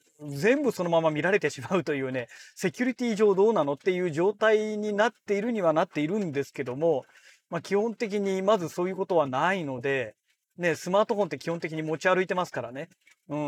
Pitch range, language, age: 150-210 Hz, Japanese, 40-59